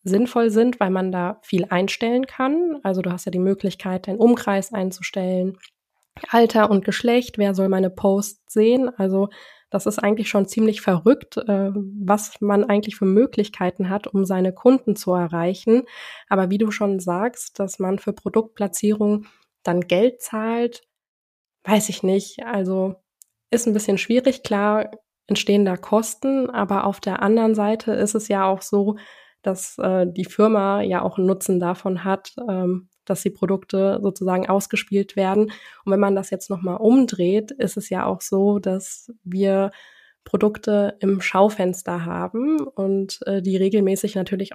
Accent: German